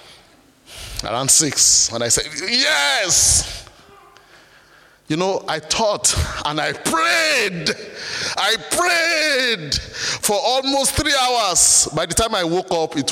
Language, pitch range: English, 135-205 Hz